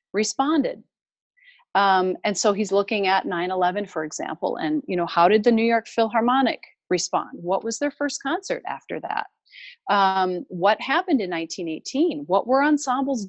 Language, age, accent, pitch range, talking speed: English, 40-59, American, 175-255 Hz, 160 wpm